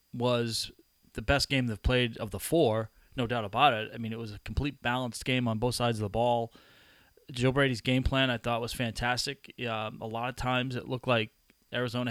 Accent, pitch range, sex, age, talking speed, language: American, 120-140 Hz, male, 30-49, 220 wpm, English